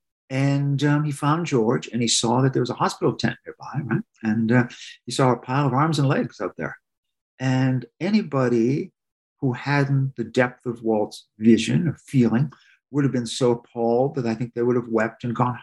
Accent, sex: American, male